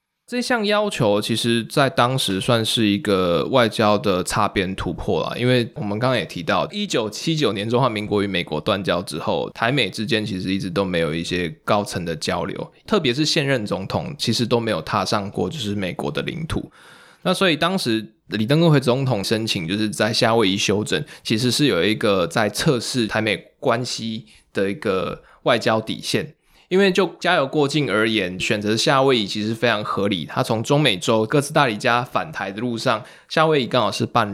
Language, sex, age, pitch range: Chinese, male, 20-39, 105-135 Hz